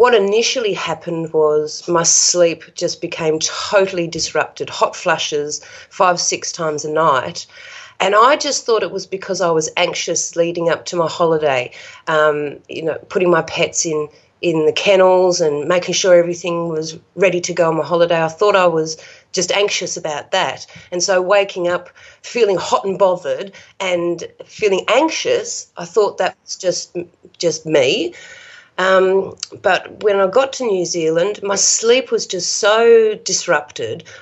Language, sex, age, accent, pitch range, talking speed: English, female, 40-59, Australian, 170-265 Hz, 160 wpm